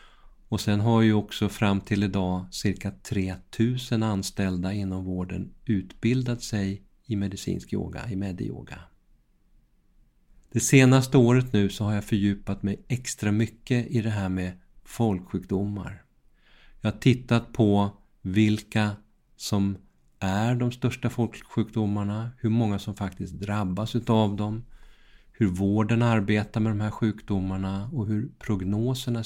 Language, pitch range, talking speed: Swedish, 100-120 Hz, 130 wpm